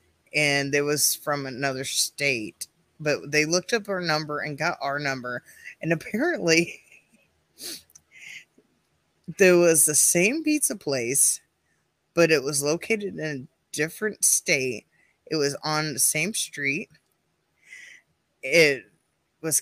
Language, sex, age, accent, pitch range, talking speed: English, female, 20-39, American, 145-195 Hz, 120 wpm